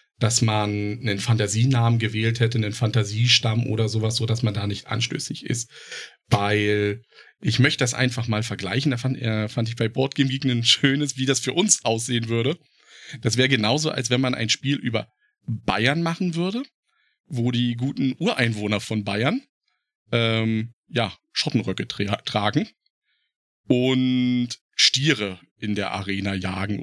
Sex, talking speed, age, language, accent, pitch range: male, 155 wpm, 40-59, German, German, 115-150 Hz